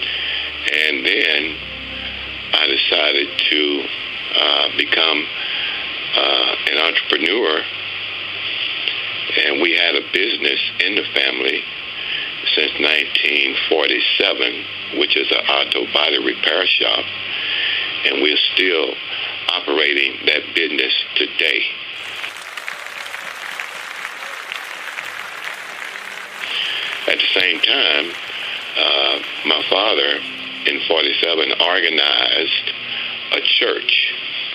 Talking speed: 80 wpm